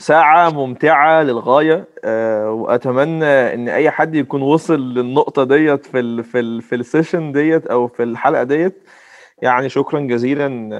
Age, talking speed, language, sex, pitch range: 30-49, 135 wpm, Arabic, male, 120-150 Hz